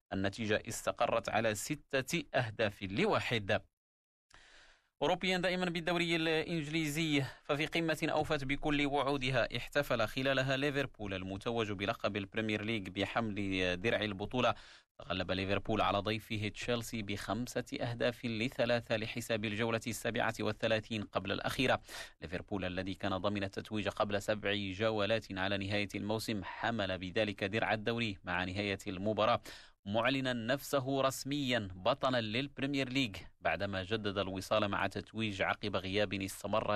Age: 30-49